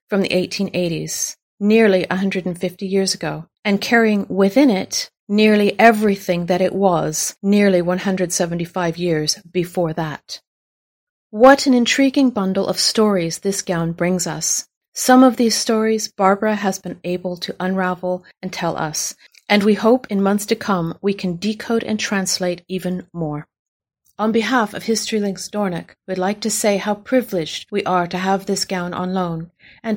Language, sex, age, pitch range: English, female, 40-59, 180-215 Hz